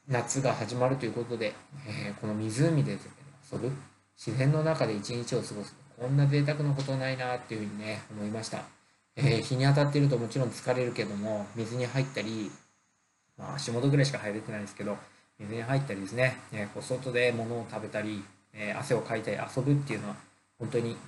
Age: 20-39